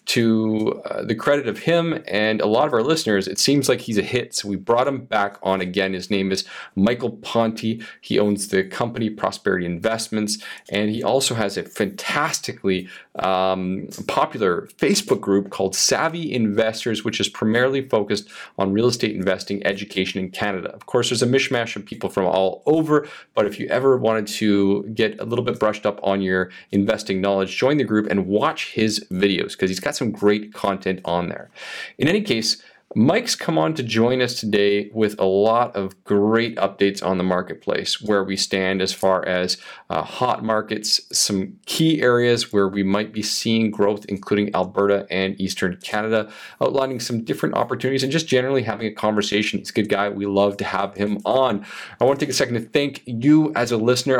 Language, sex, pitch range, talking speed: English, male, 100-120 Hz, 195 wpm